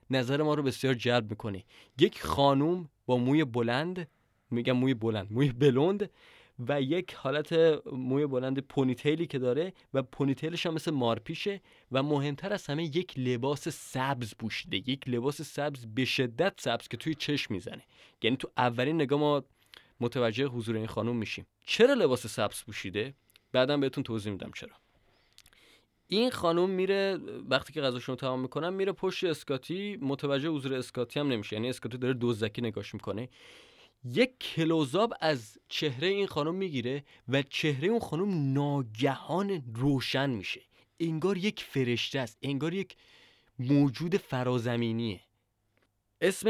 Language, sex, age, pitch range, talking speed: Persian, male, 20-39, 120-155 Hz, 145 wpm